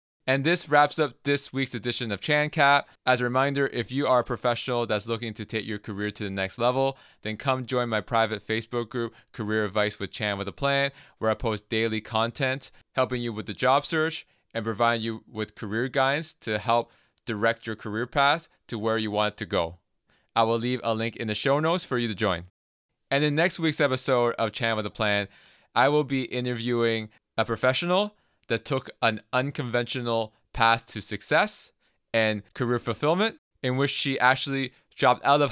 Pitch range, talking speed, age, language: 110-130 Hz, 200 wpm, 20-39, English